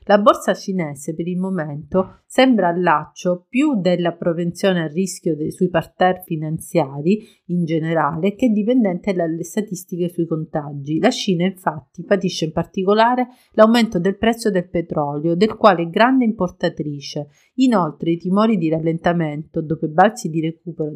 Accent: native